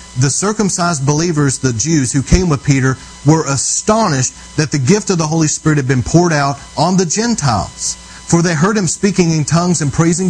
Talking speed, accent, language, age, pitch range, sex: 200 wpm, American, English, 40-59, 125-170 Hz, male